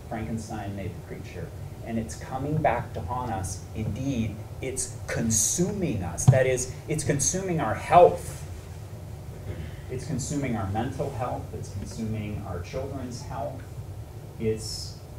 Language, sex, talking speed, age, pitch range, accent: English, male, 125 wpm, 30-49, 100-125 Hz, American